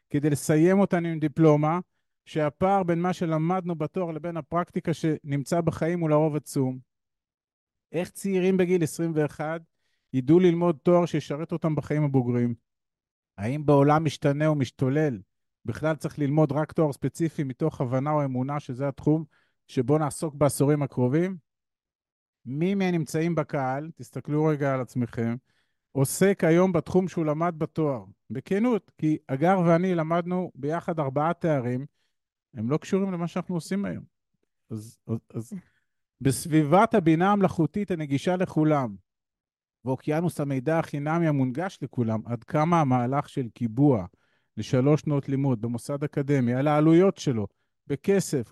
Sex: male